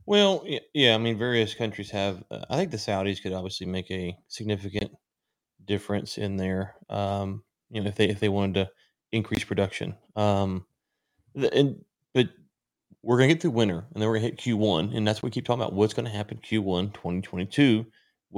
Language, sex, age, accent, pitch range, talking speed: English, male, 30-49, American, 100-115 Hz, 195 wpm